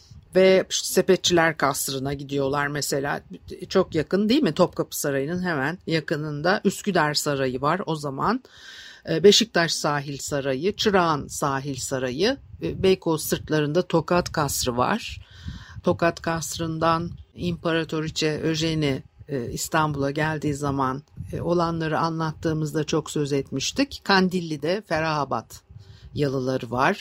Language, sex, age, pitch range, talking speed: Turkish, female, 60-79, 140-190 Hz, 100 wpm